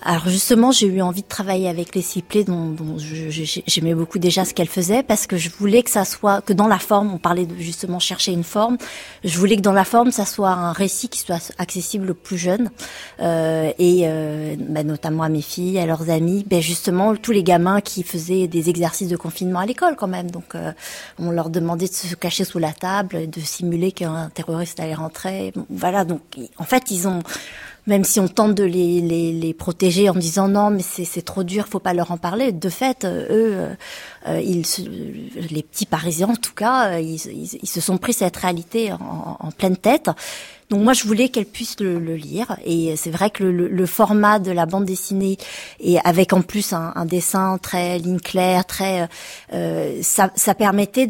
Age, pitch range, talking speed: 30-49, 170-205 Hz, 215 wpm